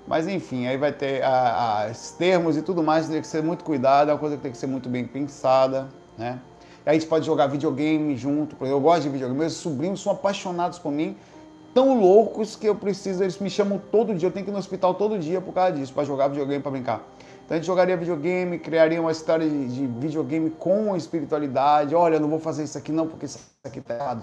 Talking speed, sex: 240 wpm, male